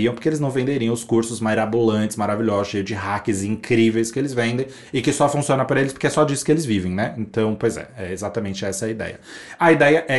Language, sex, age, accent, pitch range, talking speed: Portuguese, male, 20-39, Brazilian, 110-135 Hz, 235 wpm